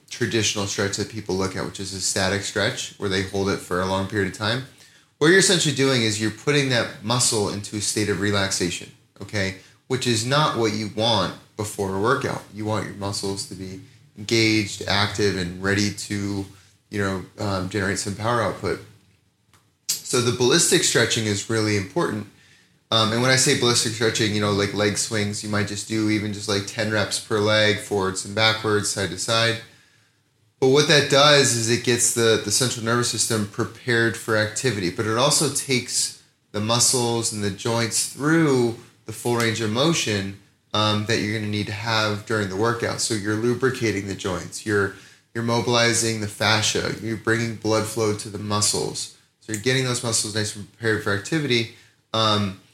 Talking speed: 190 wpm